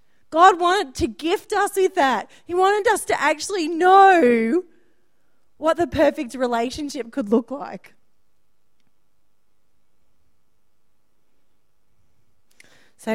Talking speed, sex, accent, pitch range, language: 95 wpm, female, Australian, 190-255 Hz, English